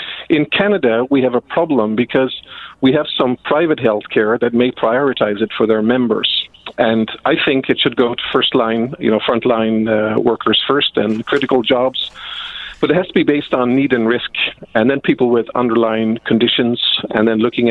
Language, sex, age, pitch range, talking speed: English, male, 50-69, 110-130 Hz, 185 wpm